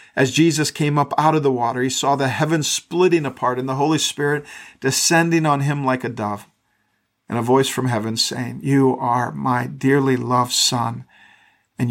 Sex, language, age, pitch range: male, English, 50-69, 125-145 Hz